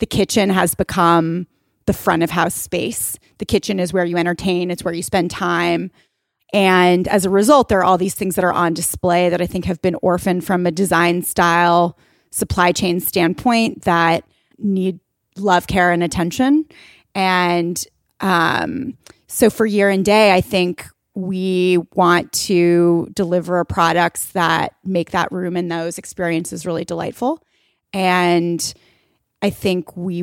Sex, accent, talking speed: female, American, 155 wpm